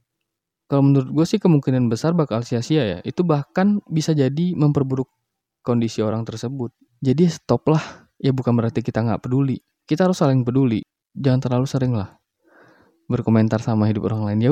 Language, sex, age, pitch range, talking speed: Indonesian, male, 20-39, 110-135 Hz, 160 wpm